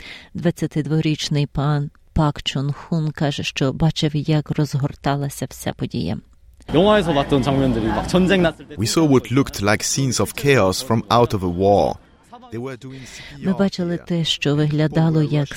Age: 30-49